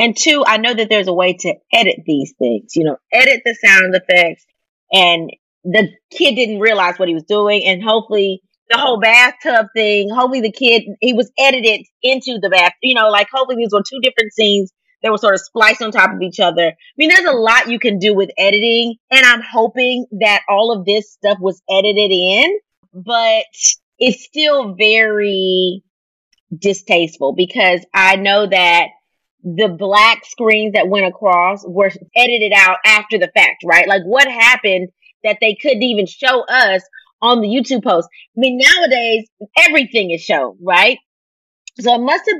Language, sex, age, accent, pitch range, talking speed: English, female, 30-49, American, 185-235 Hz, 180 wpm